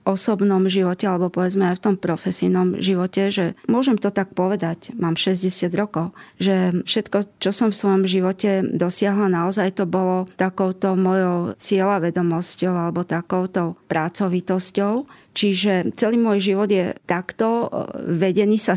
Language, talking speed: Slovak, 135 wpm